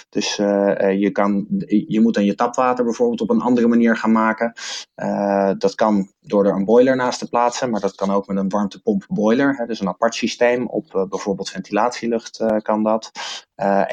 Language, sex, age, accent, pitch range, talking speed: Dutch, male, 20-39, Dutch, 100-120 Hz, 195 wpm